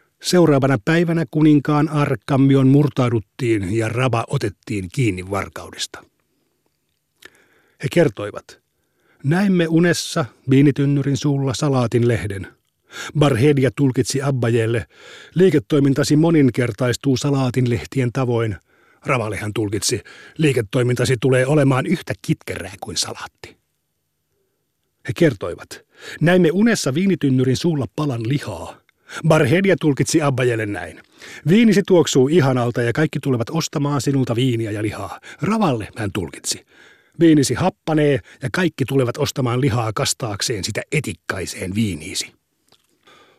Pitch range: 120-155 Hz